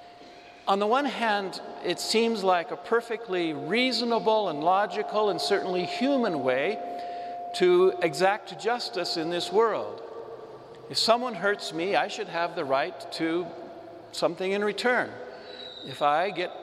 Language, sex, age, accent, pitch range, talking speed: English, male, 60-79, American, 150-210 Hz, 135 wpm